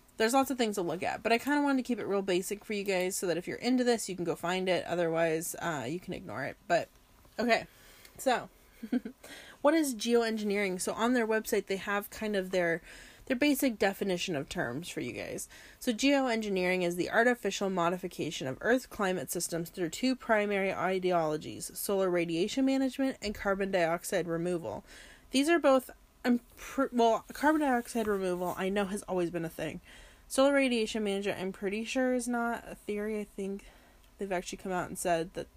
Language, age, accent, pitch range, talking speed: English, 30-49, American, 180-230 Hz, 195 wpm